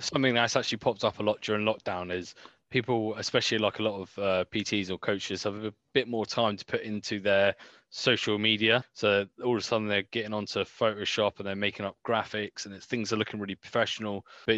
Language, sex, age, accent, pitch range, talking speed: English, male, 20-39, British, 105-130 Hz, 220 wpm